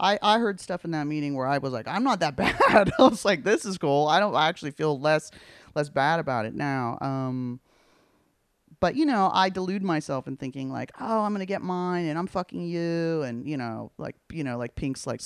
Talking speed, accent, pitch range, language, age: 240 wpm, American, 115-155 Hz, English, 30-49